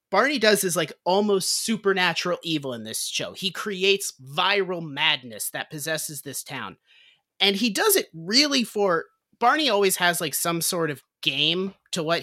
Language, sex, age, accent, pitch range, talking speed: English, male, 30-49, American, 145-185 Hz, 165 wpm